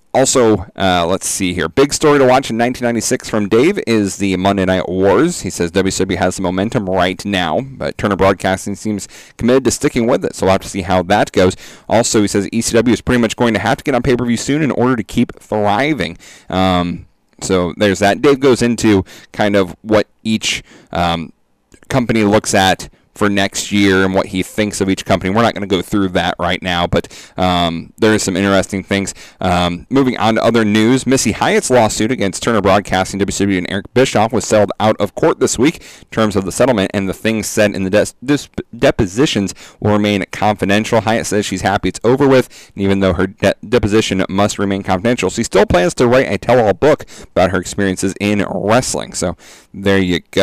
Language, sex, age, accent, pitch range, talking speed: English, male, 30-49, American, 95-115 Hz, 205 wpm